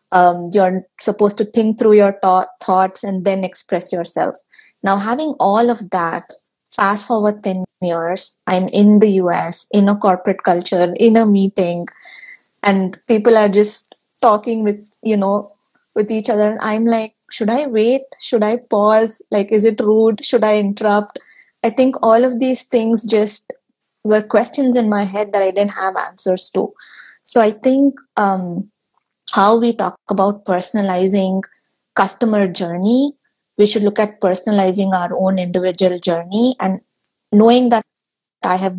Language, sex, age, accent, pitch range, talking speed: English, female, 20-39, Indian, 185-220 Hz, 160 wpm